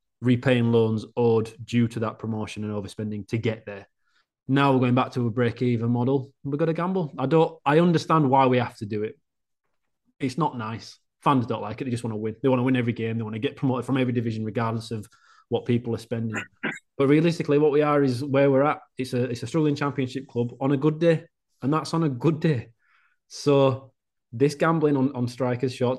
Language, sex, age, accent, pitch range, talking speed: English, male, 20-39, British, 110-135 Hz, 230 wpm